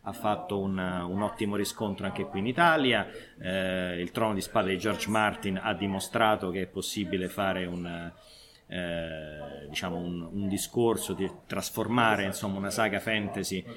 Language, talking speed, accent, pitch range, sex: Italian, 155 wpm, native, 95-110 Hz, male